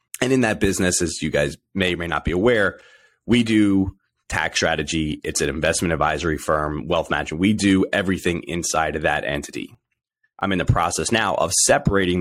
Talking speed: 185 wpm